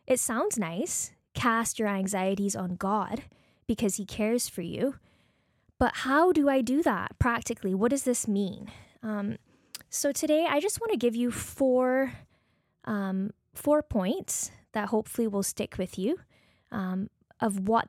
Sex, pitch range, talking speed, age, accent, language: female, 190-250 Hz, 155 wpm, 20-39, American, English